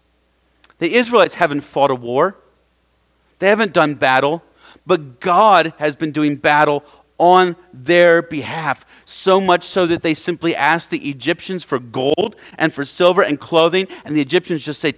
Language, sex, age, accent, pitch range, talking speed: English, male, 40-59, American, 140-195 Hz, 160 wpm